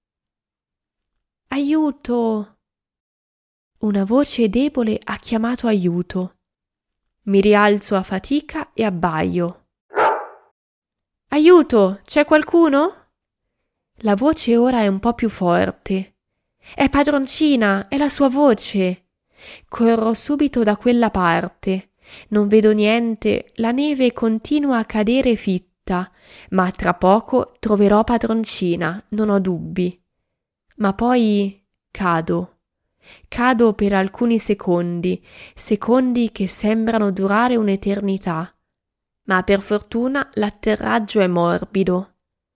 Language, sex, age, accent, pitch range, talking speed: Italian, female, 20-39, native, 190-240 Hz, 100 wpm